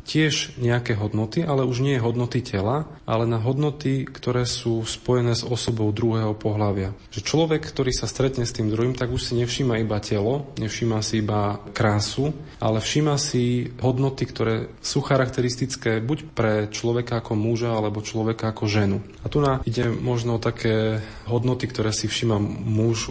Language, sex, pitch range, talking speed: Slovak, male, 110-125 Hz, 160 wpm